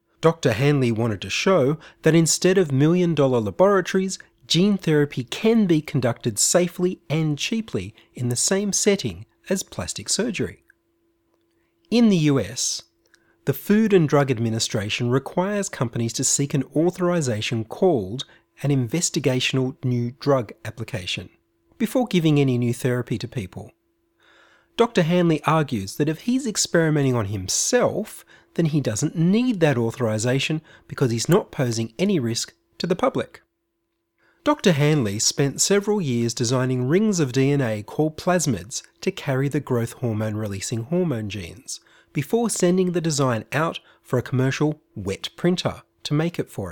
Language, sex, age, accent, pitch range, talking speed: English, male, 30-49, Australian, 120-180 Hz, 140 wpm